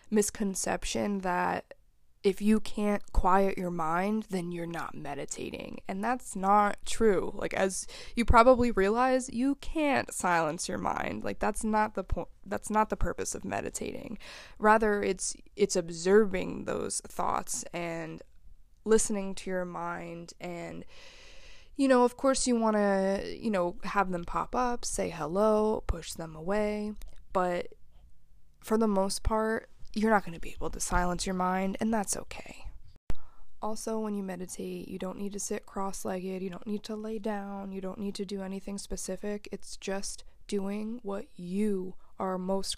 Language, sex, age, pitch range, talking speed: English, female, 20-39, 185-215 Hz, 160 wpm